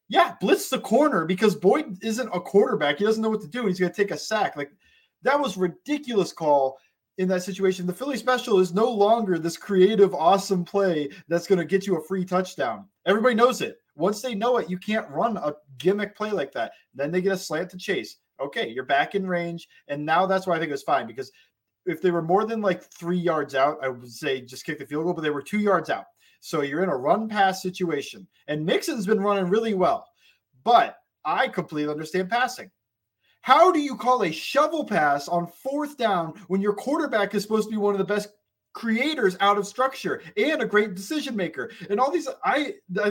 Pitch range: 175-240 Hz